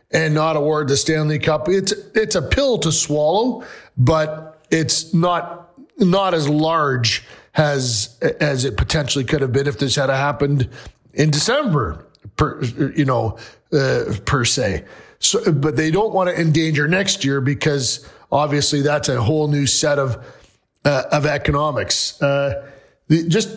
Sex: male